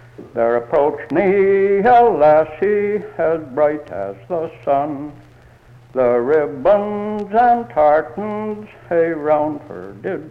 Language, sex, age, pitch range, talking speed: English, male, 60-79, 120-175 Hz, 100 wpm